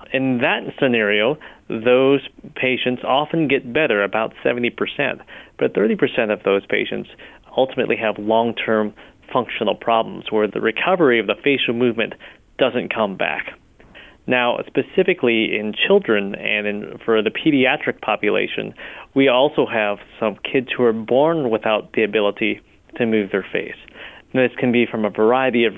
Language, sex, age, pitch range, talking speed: English, male, 30-49, 110-130 Hz, 140 wpm